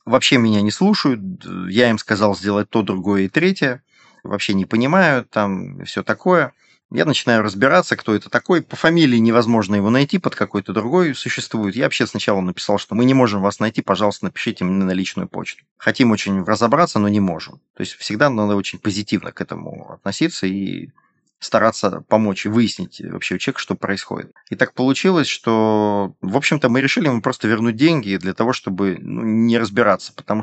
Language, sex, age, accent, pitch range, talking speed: Russian, male, 30-49, native, 100-125 Hz, 180 wpm